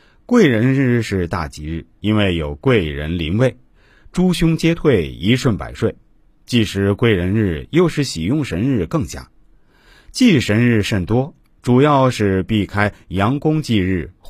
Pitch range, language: 85-140 Hz, Chinese